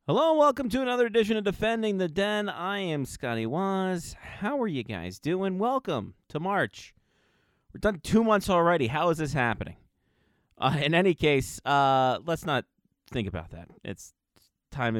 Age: 30-49